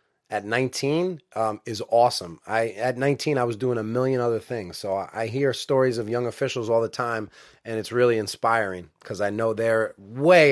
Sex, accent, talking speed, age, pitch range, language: male, American, 195 wpm, 30-49, 115-140 Hz, English